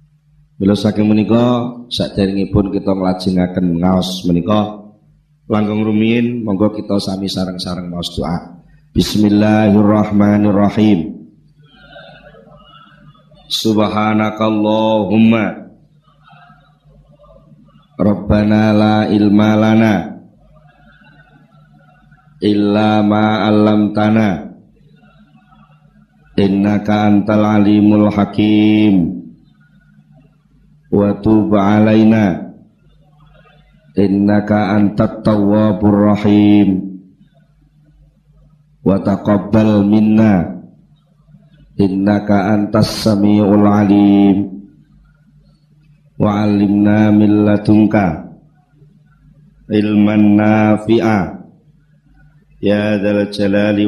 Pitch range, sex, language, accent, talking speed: 100-145 Hz, male, Indonesian, native, 55 wpm